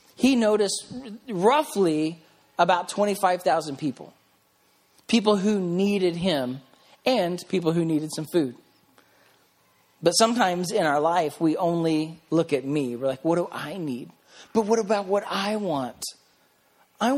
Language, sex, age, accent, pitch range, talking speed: English, male, 40-59, American, 160-210 Hz, 135 wpm